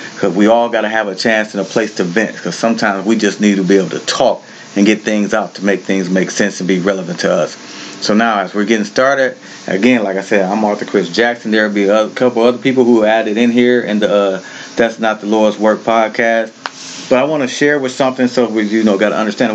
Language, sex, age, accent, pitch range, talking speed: English, male, 30-49, American, 100-120 Hz, 260 wpm